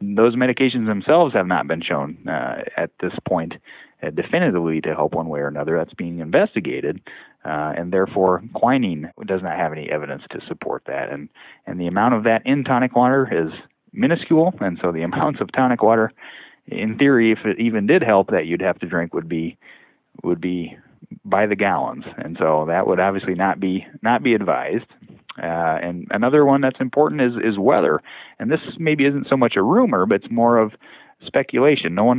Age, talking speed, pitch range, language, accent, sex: 30-49, 195 wpm, 95-125 Hz, English, American, male